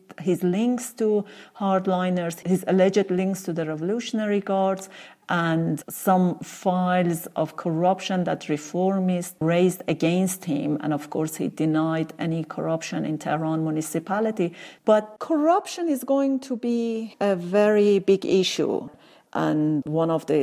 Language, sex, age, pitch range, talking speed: English, female, 40-59, 155-190 Hz, 130 wpm